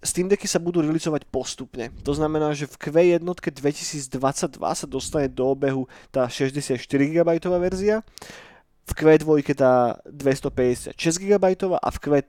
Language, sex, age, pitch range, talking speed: Slovak, male, 30-49, 130-160 Hz, 115 wpm